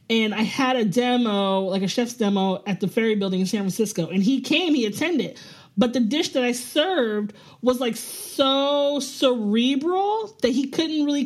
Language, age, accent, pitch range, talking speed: English, 20-39, American, 215-275 Hz, 185 wpm